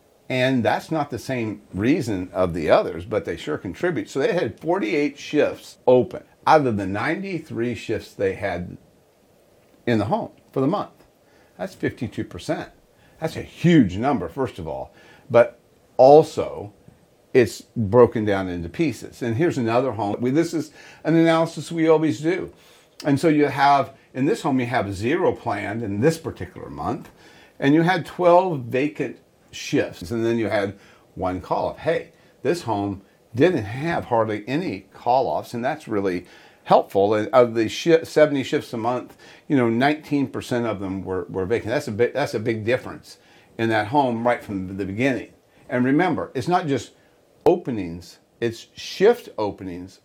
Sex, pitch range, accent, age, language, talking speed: male, 105-150 Hz, American, 50-69, English, 165 wpm